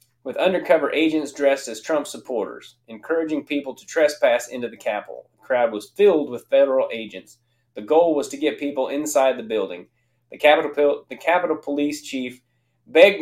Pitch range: 120-190 Hz